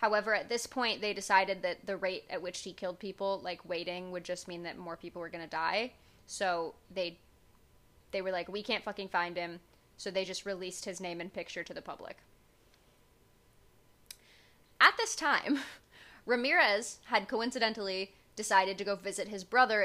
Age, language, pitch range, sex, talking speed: 20-39, English, 185-225 Hz, female, 180 wpm